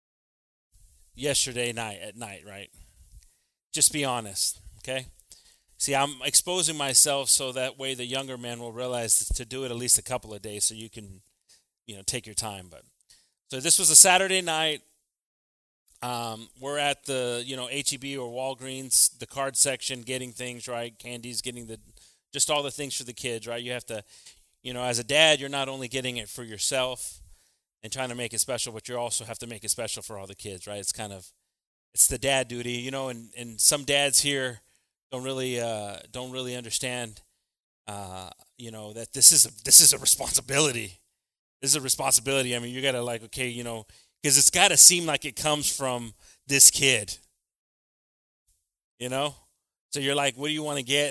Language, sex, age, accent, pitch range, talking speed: English, male, 30-49, American, 110-135 Hz, 200 wpm